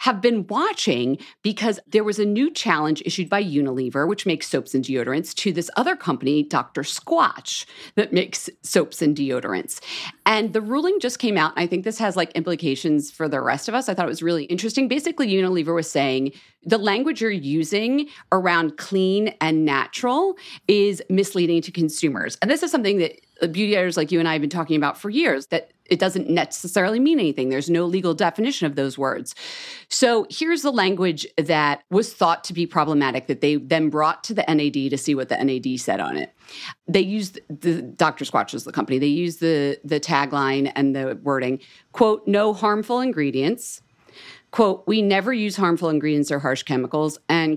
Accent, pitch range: American, 150-215 Hz